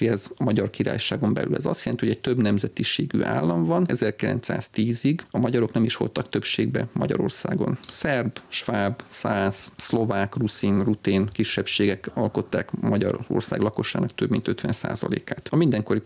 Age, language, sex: 30-49, Hungarian, male